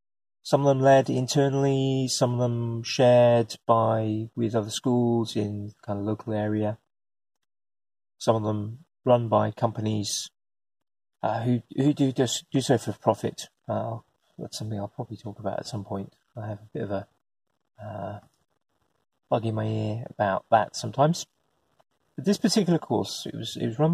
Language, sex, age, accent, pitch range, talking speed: English, male, 30-49, British, 110-135 Hz, 165 wpm